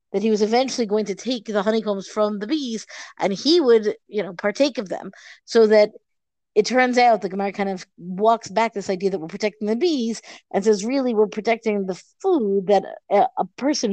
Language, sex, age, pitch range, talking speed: English, female, 50-69, 195-245 Hz, 210 wpm